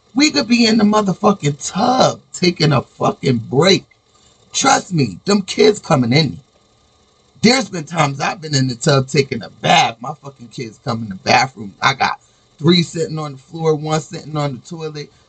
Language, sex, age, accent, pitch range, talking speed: English, male, 30-49, American, 120-175 Hz, 185 wpm